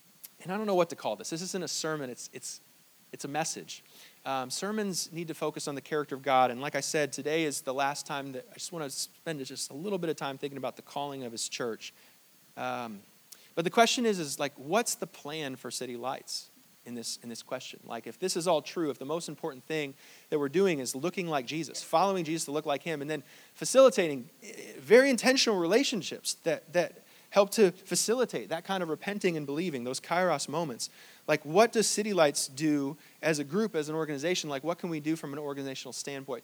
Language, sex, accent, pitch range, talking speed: English, male, American, 140-175 Hz, 225 wpm